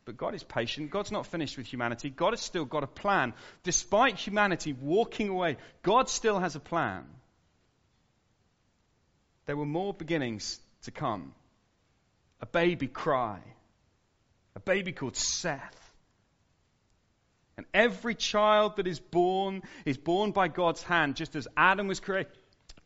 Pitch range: 120-190 Hz